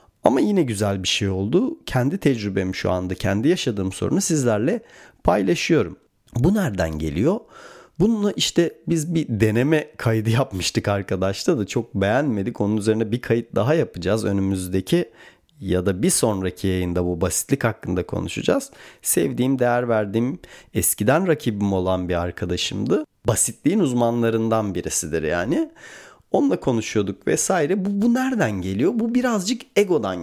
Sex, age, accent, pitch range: male, 40-59, native, 95-160 Hz